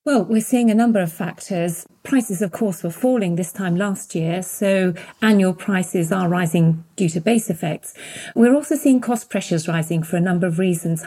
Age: 40-59